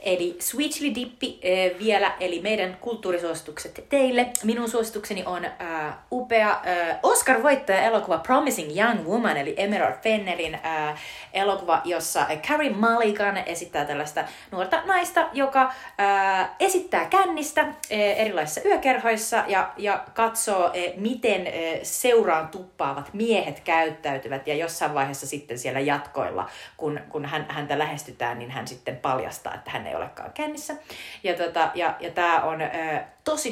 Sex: female